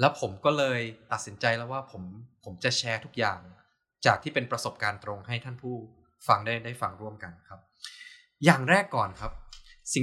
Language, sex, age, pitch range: Thai, male, 20-39, 105-135 Hz